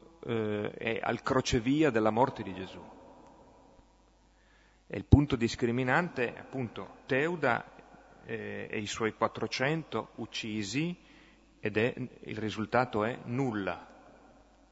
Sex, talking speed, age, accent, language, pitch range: male, 100 wpm, 40-59, native, Italian, 105-130 Hz